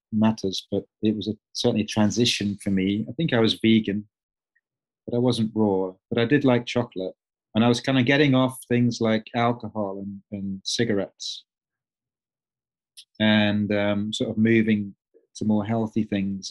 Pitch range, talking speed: 105-120 Hz, 165 wpm